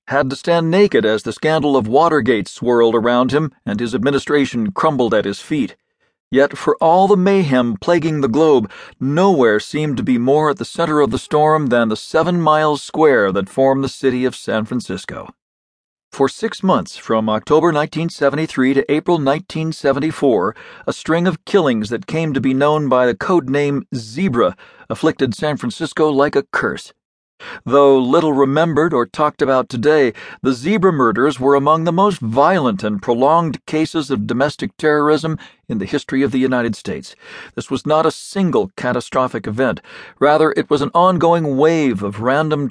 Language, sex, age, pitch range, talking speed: English, male, 40-59, 130-165 Hz, 170 wpm